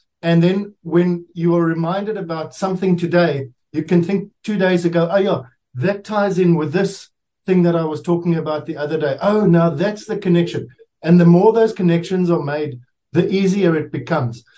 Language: English